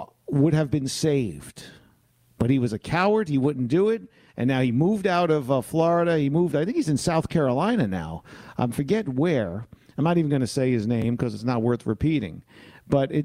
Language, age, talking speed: English, 50-69, 215 wpm